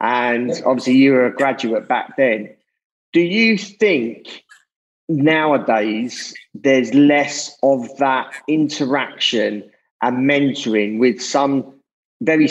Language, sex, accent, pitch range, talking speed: English, male, British, 120-150 Hz, 105 wpm